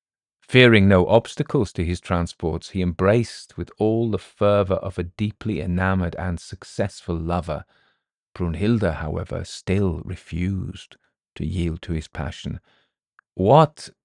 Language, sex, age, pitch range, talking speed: English, male, 40-59, 85-110 Hz, 125 wpm